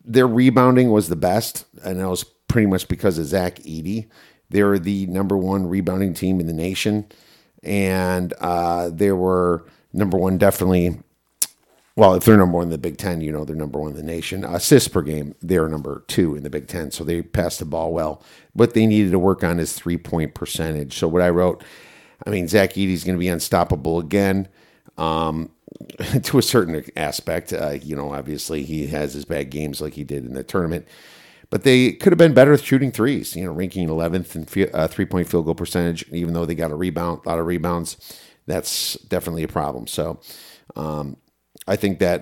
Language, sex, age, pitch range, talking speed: English, male, 50-69, 80-100 Hz, 205 wpm